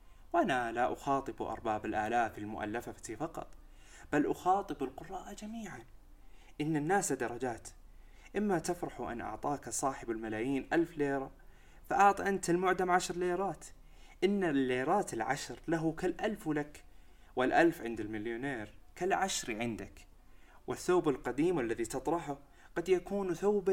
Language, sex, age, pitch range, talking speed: Arabic, male, 20-39, 110-165 Hz, 115 wpm